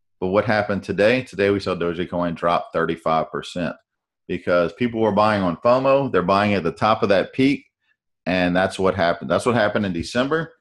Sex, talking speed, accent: male, 185 wpm, American